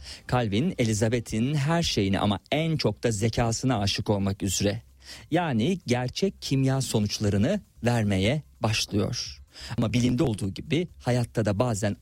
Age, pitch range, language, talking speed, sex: 40-59, 105-140 Hz, Turkish, 125 wpm, male